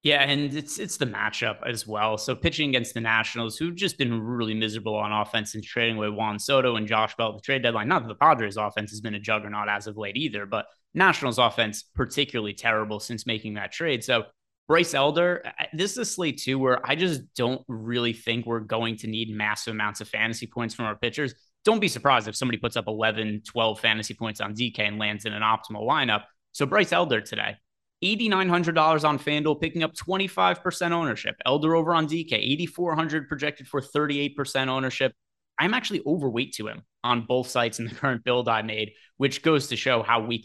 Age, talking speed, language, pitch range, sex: 20-39, 205 wpm, English, 110-140 Hz, male